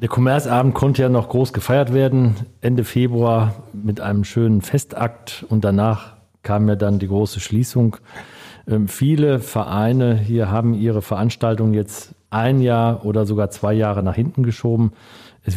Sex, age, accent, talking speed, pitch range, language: male, 40-59, German, 150 wpm, 105-120 Hz, German